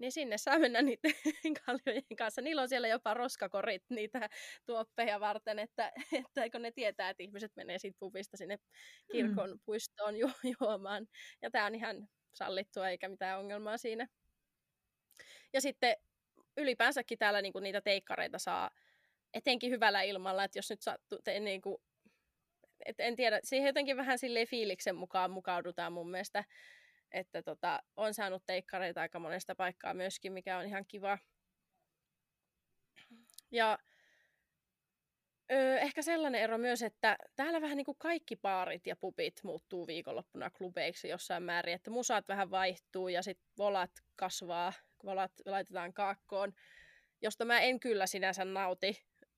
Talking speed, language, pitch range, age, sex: 140 wpm, Finnish, 190-245 Hz, 20-39, female